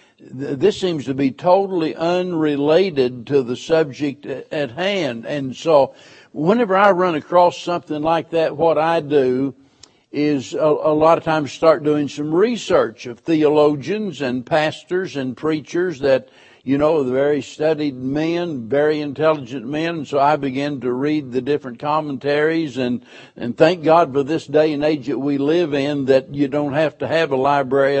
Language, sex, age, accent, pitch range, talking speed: English, male, 60-79, American, 135-160 Hz, 165 wpm